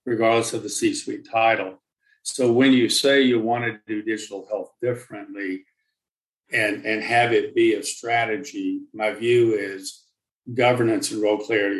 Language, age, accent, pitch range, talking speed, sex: English, 50-69, American, 110-130 Hz, 155 wpm, male